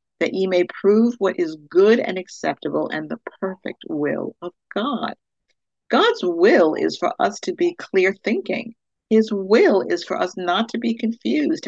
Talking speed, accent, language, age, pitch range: 170 wpm, American, English, 50-69, 175-240 Hz